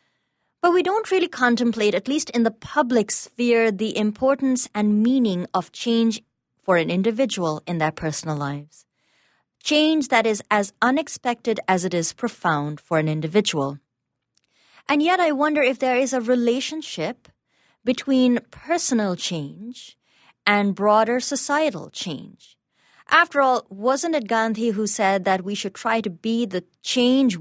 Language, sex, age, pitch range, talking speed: English, female, 30-49, 180-260 Hz, 145 wpm